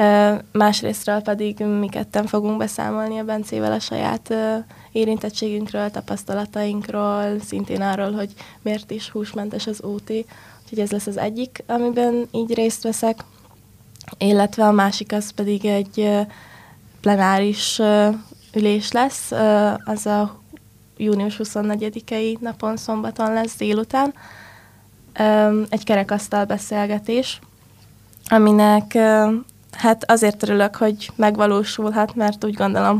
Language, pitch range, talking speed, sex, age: Hungarian, 200-215 Hz, 105 wpm, female, 20-39